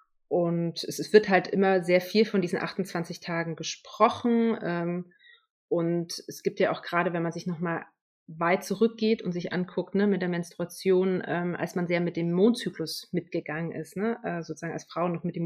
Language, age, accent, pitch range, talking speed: German, 30-49, German, 170-200 Hz, 185 wpm